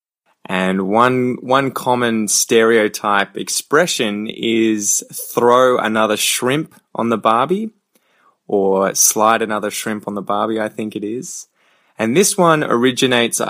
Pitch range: 105-120 Hz